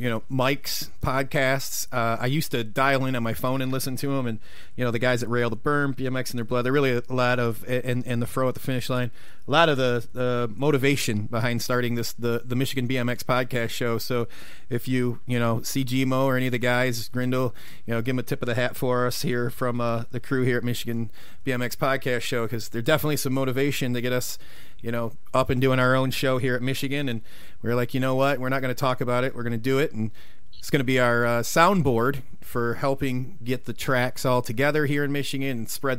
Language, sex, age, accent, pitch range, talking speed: English, male, 30-49, American, 120-130 Hz, 250 wpm